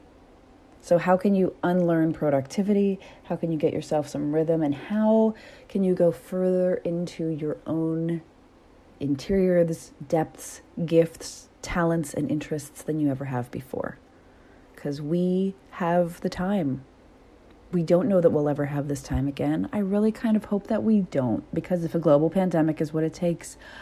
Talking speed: 165 wpm